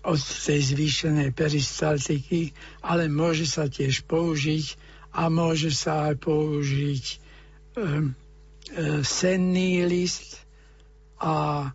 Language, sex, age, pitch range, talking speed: Slovak, male, 60-79, 145-170 Hz, 95 wpm